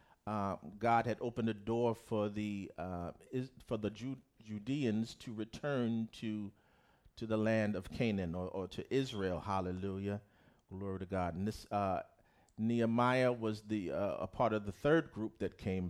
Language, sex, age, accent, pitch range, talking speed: English, male, 40-59, American, 90-105 Hz, 170 wpm